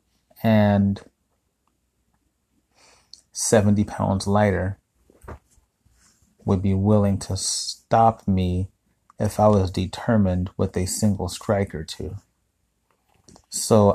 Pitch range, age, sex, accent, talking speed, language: 95-110 Hz, 30-49, male, American, 90 wpm, English